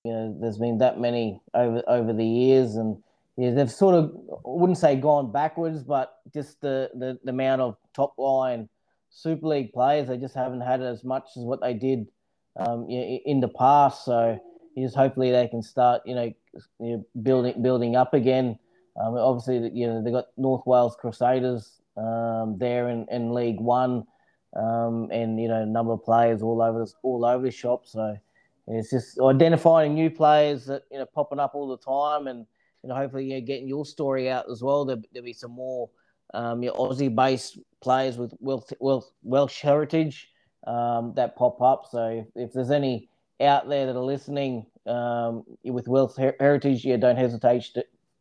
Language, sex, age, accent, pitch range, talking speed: English, male, 20-39, Australian, 115-135 Hz, 190 wpm